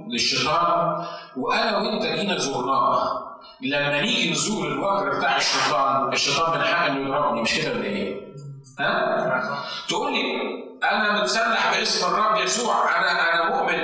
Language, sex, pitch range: Arabic, male, 160-230 Hz